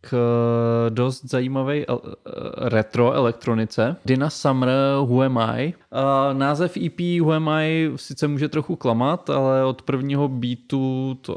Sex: male